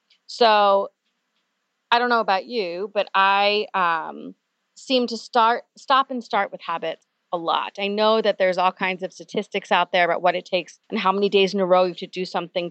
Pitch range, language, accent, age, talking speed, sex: 180-235 Hz, English, American, 30-49, 210 wpm, female